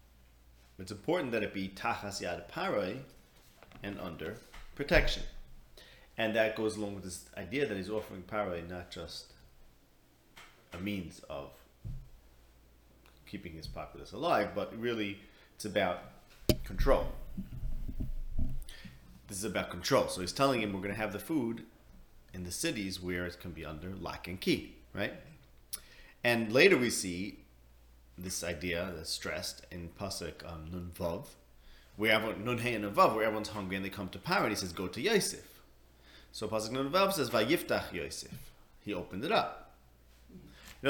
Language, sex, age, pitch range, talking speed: English, male, 30-49, 65-110 Hz, 145 wpm